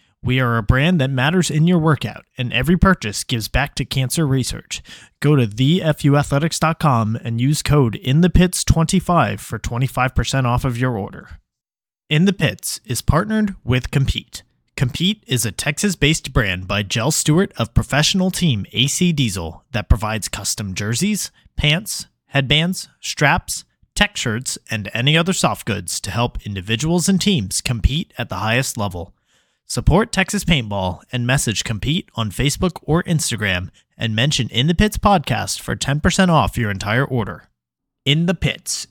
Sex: male